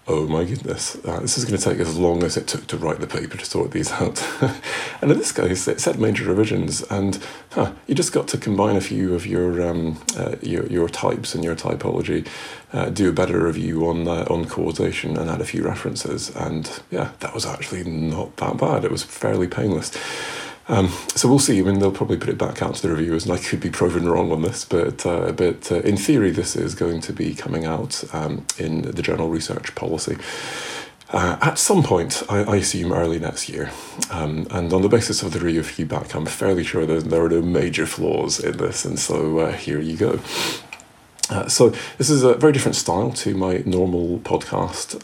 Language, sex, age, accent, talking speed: English, male, 30-49, British, 220 wpm